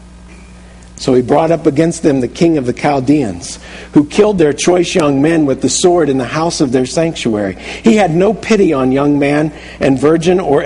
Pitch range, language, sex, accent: 120-170 Hz, English, male, American